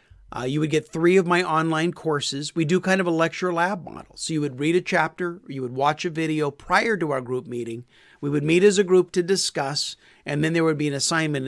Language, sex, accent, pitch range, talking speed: English, male, American, 140-180 Hz, 255 wpm